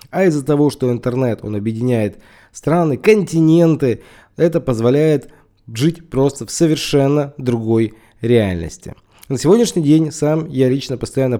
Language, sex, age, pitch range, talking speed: Russian, male, 20-39, 115-150 Hz, 125 wpm